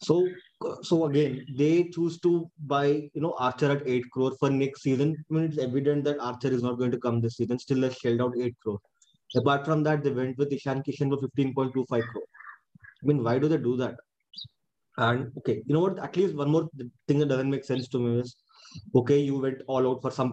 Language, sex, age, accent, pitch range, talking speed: English, male, 20-39, Indian, 125-150 Hz, 225 wpm